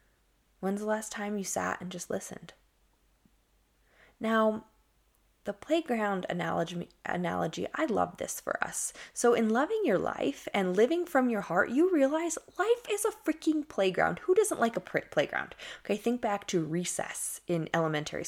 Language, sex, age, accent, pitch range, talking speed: English, female, 20-39, American, 190-265 Hz, 160 wpm